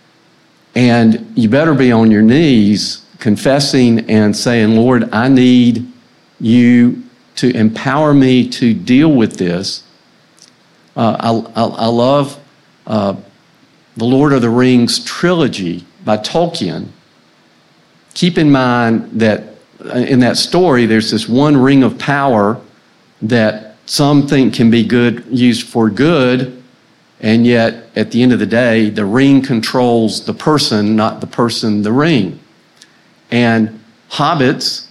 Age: 50-69